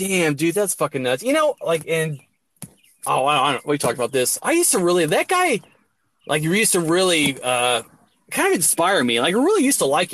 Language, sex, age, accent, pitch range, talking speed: English, male, 20-39, American, 140-185 Hz, 235 wpm